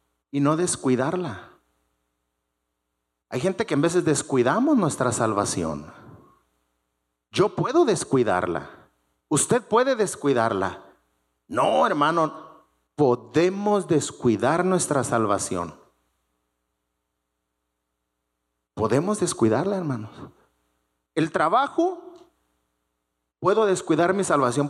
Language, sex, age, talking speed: English, male, 40-59, 80 wpm